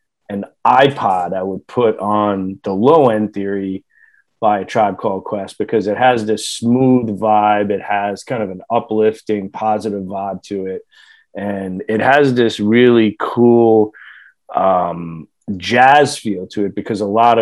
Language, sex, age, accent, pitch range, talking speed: English, male, 30-49, American, 100-120 Hz, 155 wpm